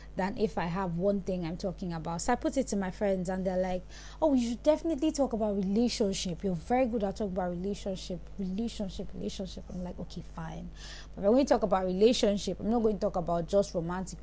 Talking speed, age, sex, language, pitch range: 225 wpm, 20-39, female, English, 180-215 Hz